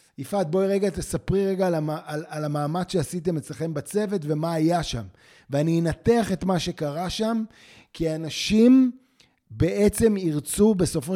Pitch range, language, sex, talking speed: 150-190 Hz, Hebrew, male, 140 wpm